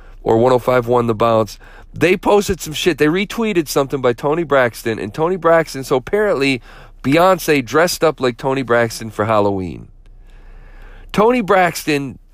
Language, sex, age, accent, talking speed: English, male, 40-59, American, 140 wpm